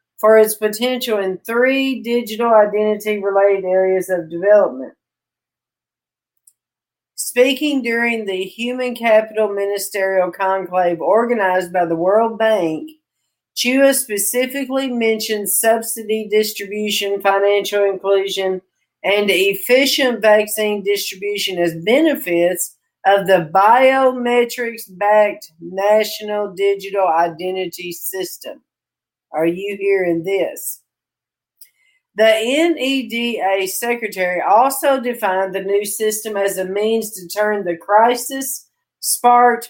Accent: American